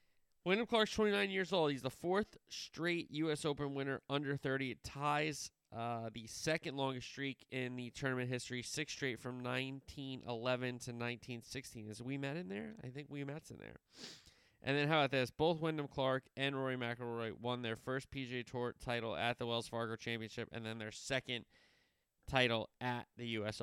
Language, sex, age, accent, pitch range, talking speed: English, male, 20-39, American, 115-140 Hz, 185 wpm